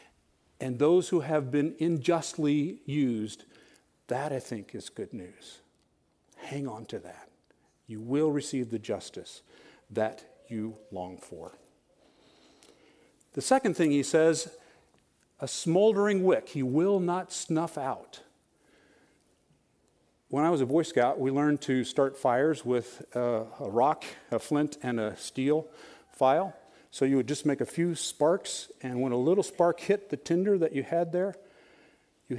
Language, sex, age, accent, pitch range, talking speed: English, male, 50-69, American, 130-165 Hz, 150 wpm